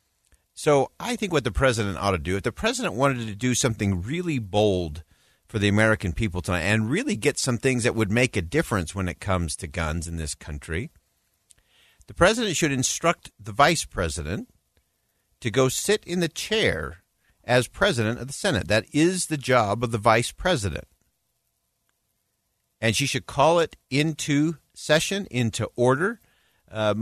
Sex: male